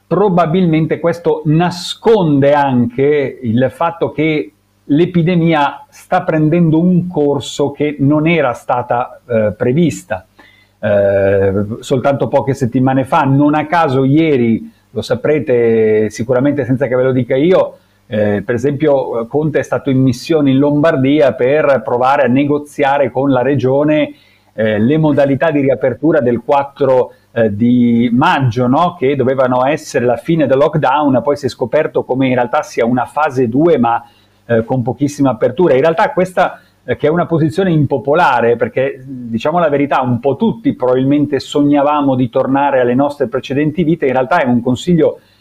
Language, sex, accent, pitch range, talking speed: Italian, male, native, 125-155 Hz, 150 wpm